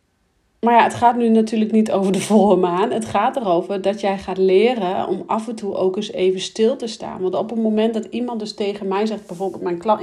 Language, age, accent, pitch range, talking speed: Dutch, 40-59, Dutch, 195-240 Hz, 235 wpm